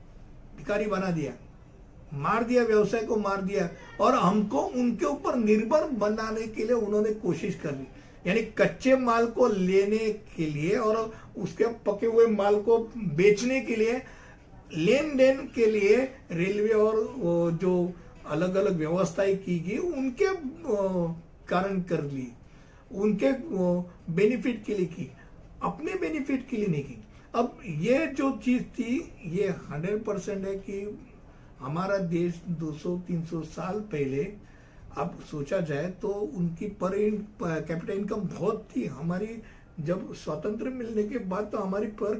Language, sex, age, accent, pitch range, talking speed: Hindi, male, 60-79, native, 180-225 Hz, 140 wpm